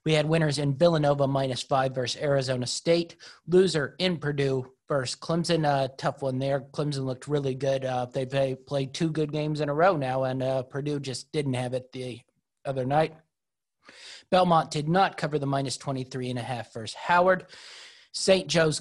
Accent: American